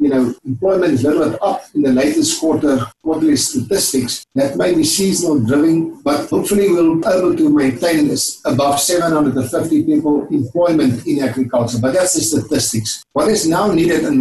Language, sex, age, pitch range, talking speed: English, male, 60-79, 140-205 Hz, 170 wpm